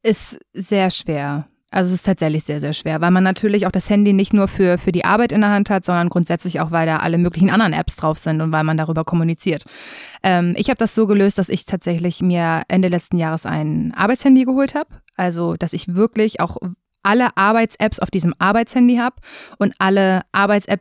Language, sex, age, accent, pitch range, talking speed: German, female, 20-39, German, 175-210 Hz, 210 wpm